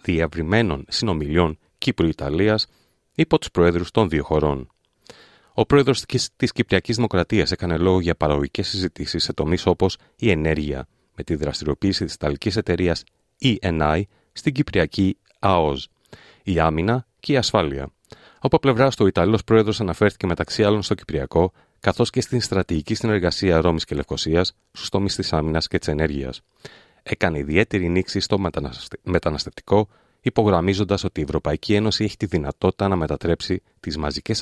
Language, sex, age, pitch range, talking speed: Greek, male, 30-49, 80-110 Hz, 140 wpm